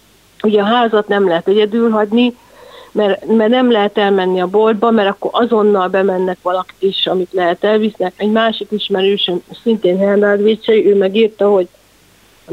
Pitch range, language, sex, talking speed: 185-215 Hz, Hungarian, female, 160 wpm